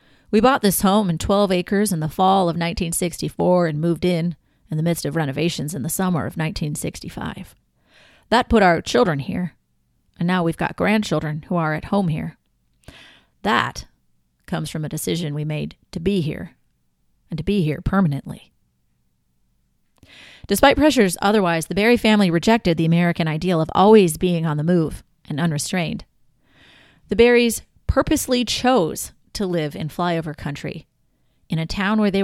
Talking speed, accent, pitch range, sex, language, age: 160 wpm, American, 155-210 Hz, female, English, 30-49